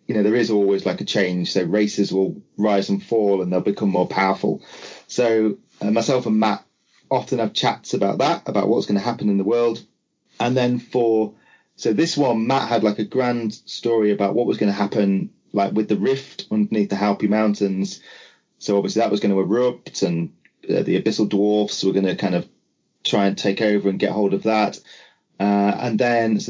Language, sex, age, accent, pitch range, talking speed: English, male, 30-49, British, 100-115 Hz, 210 wpm